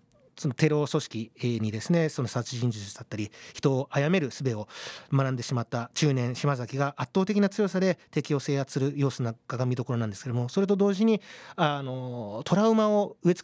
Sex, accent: male, native